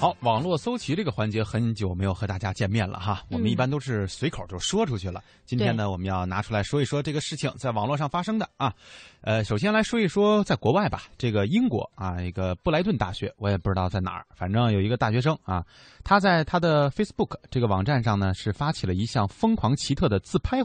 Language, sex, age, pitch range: Chinese, male, 20-39, 100-145 Hz